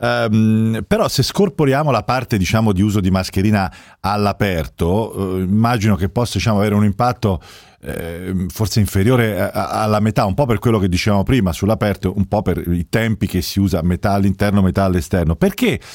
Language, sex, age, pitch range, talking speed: Italian, male, 40-59, 95-125 Hz, 160 wpm